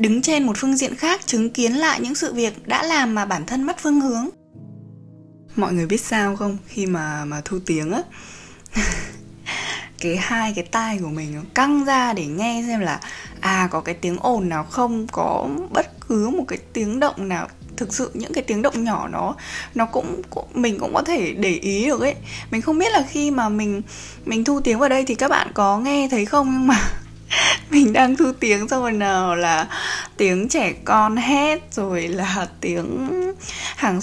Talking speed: 205 wpm